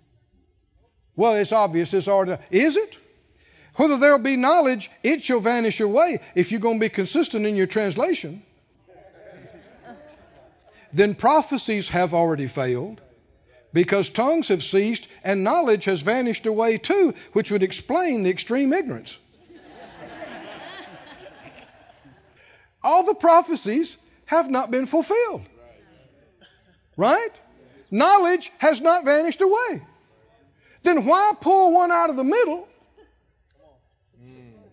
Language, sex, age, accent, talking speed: English, male, 60-79, American, 115 wpm